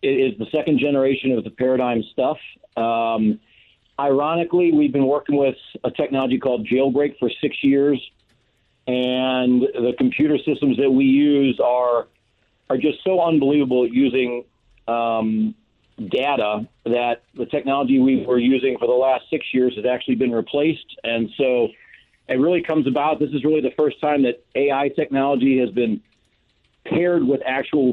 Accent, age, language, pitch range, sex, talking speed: American, 50-69, English, 120-140 Hz, male, 155 wpm